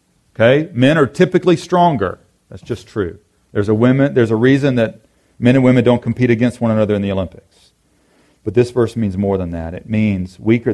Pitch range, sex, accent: 90-110 Hz, male, American